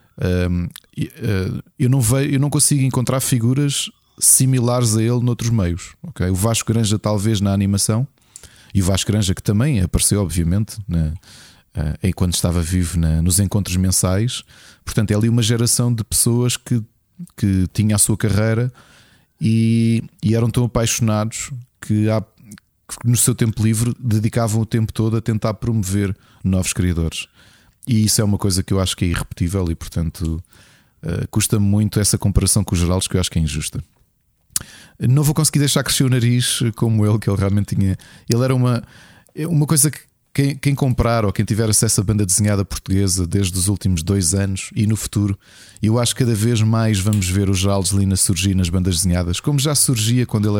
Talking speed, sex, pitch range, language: 175 wpm, male, 95-120 Hz, Portuguese